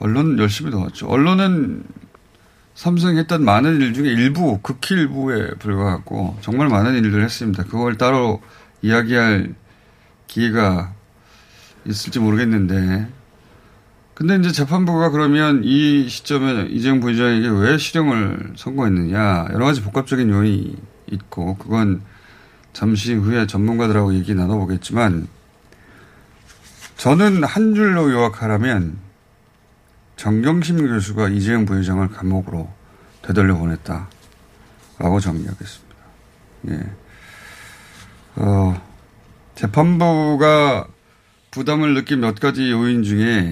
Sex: male